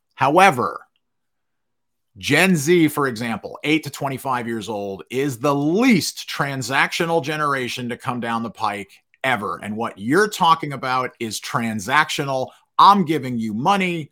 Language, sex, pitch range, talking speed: English, male, 125-170 Hz, 135 wpm